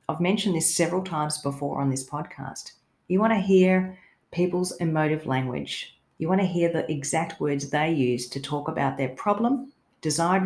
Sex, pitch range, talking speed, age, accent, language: female, 145-185 Hz, 180 wpm, 40-59, Australian, English